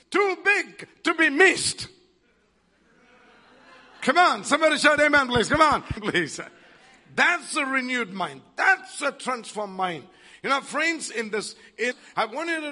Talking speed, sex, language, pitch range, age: 150 wpm, male, English, 180-260 Hz, 50-69